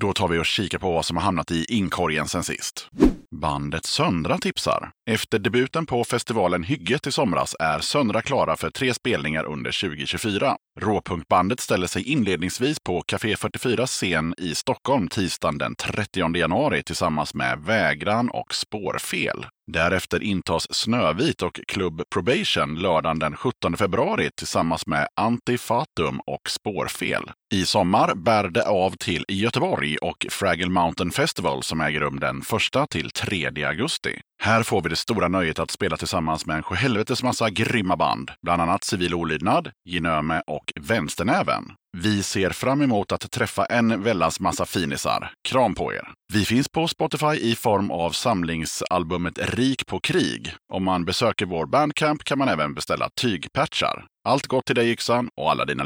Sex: male